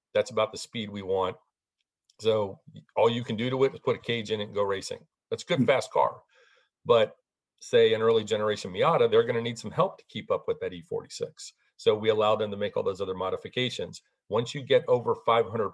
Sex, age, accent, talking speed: male, 40-59, American, 230 wpm